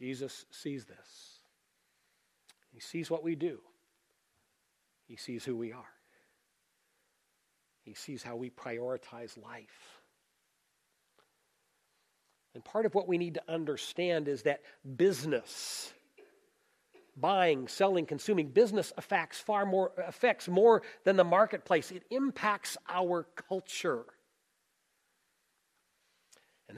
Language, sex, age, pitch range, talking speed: English, male, 40-59, 145-205 Hz, 105 wpm